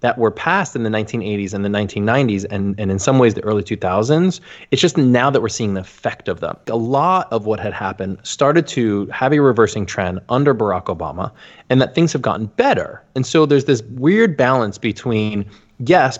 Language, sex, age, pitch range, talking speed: English, male, 20-39, 100-140 Hz, 205 wpm